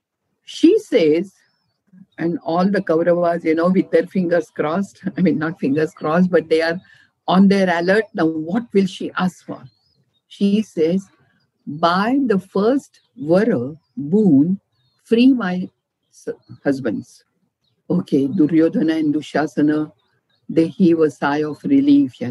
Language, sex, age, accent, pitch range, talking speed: English, female, 50-69, Indian, 160-230 Hz, 135 wpm